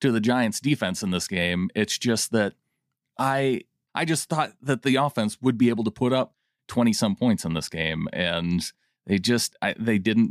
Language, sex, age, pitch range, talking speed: English, male, 30-49, 105-145 Hz, 200 wpm